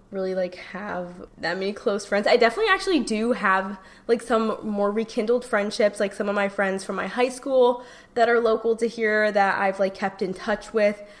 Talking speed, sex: 205 wpm, female